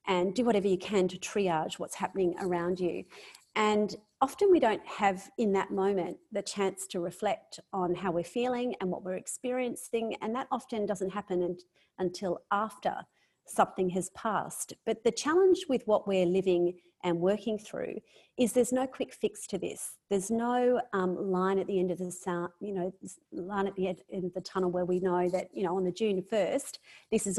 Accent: Australian